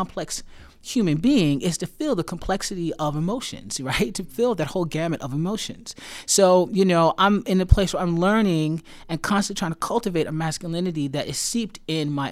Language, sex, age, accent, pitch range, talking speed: English, male, 30-49, American, 145-190 Hz, 195 wpm